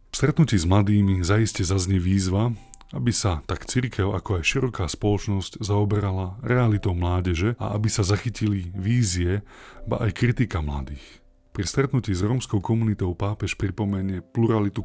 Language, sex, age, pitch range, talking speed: Slovak, male, 30-49, 90-115 Hz, 135 wpm